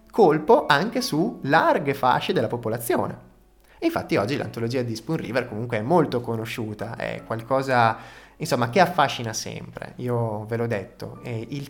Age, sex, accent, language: 20-39, male, native, Italian